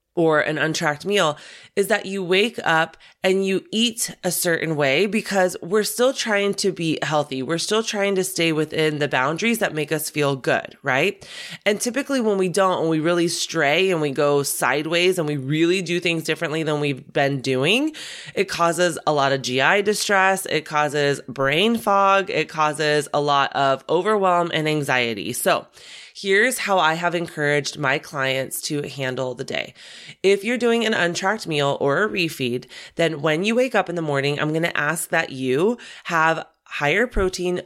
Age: 20-39